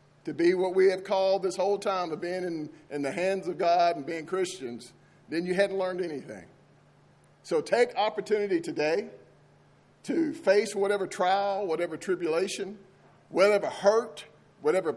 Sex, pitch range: male, 165-210 Hz